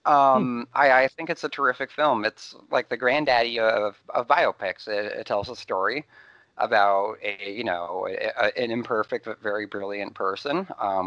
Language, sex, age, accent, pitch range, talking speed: English, male, 30-49, American, 100-135 Hz, 180 wpm